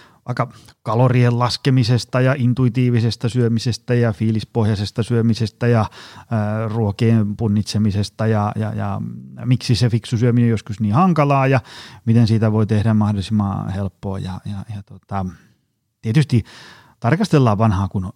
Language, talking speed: Finnish, 130 wpm